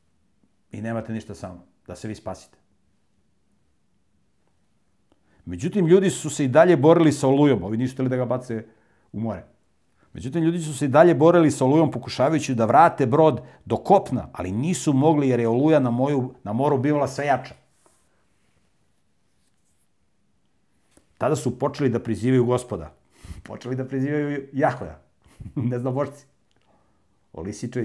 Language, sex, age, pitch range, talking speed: English, male, 50-69, 95-135 Hz, 135 wpm